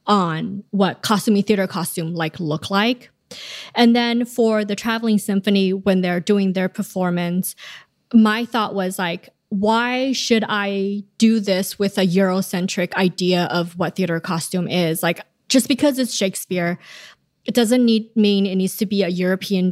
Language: English